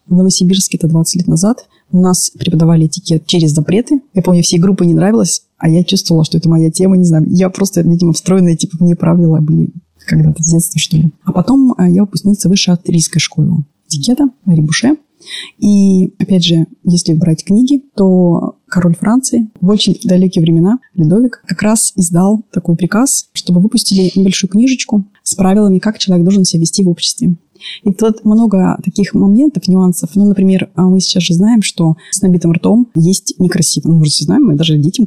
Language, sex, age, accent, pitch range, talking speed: Russian, female, 20-39, native, 170-205 Hz, 180 wpm